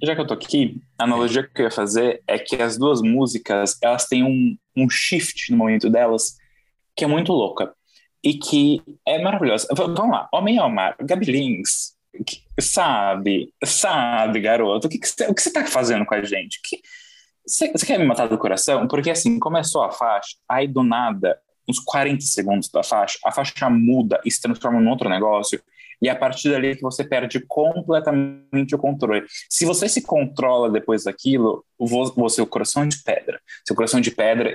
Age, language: 20-39, Portuguese